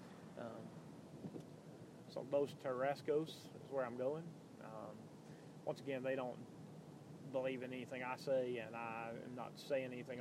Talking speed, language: 140 wpm, English